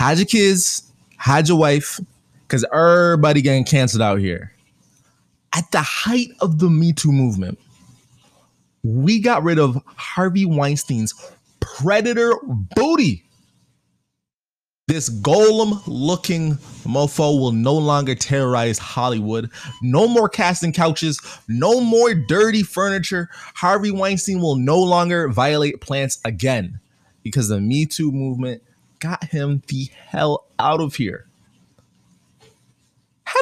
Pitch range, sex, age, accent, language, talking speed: 120-175 Hz, male, 20-39, American, English, 115 wpm